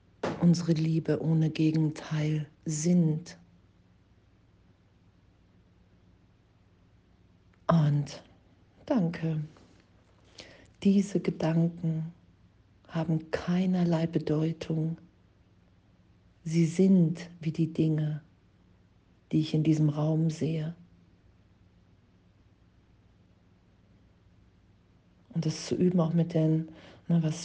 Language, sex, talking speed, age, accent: German, female, 70 wpm, 50-69, German